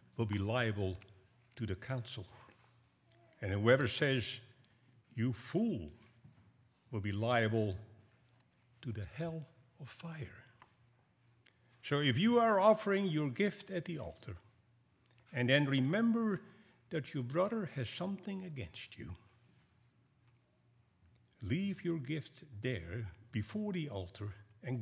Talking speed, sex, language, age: 115 wpm, male, English, 60-79